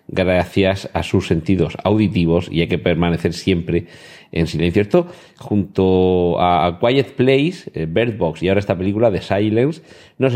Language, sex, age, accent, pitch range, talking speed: Spanish, male, 40-59, Spanish, 85-110 Hz, 150 wpm